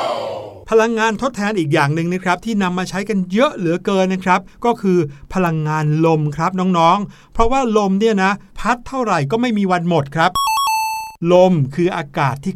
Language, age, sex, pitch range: Thai, 60-79, male, 160-205 Hz